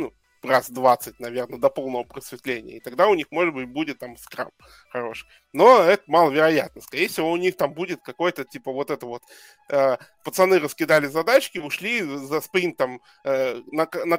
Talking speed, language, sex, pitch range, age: 155 wpm, Russian, male, 130-180 Hz, 20-39